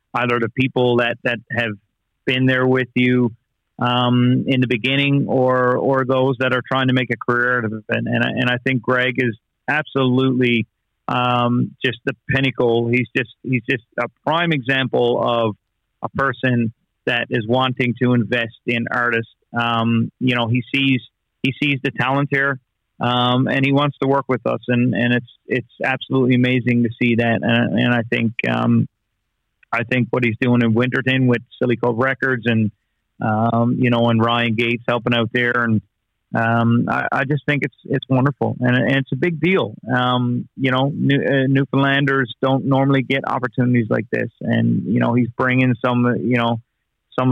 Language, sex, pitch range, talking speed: English, male, 115-130 Hz, 180 wpm